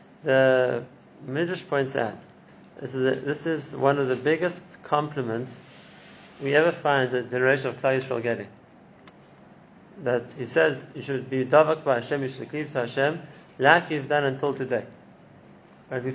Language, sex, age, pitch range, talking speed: English, male, 30-49, 130-155 Hz, 165 wpm